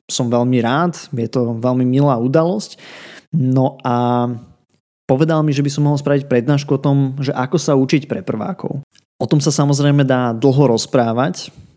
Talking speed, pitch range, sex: 170 wpm, 125-145 Hz, male